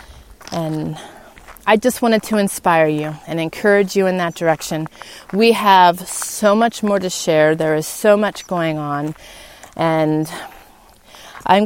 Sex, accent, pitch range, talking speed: female, American, 155-195 Hz, 145 wpm